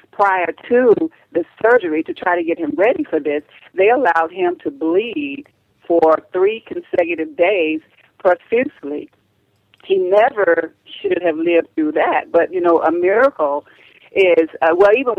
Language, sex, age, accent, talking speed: English, female, 50-69, American, 150 wpm